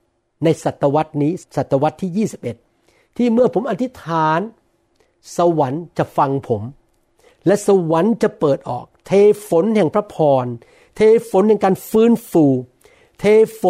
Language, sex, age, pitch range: Thai, male, 60-79, 160-215 Hz